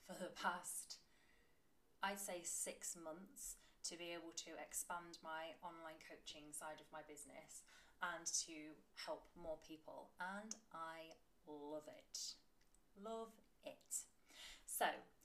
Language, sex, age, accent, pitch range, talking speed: English, female, 20-39, British, 160-210 Hz, 120 wpm